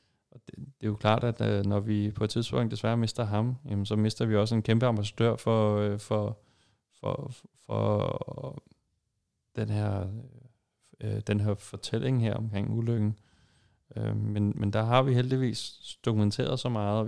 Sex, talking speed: male, 150 wpm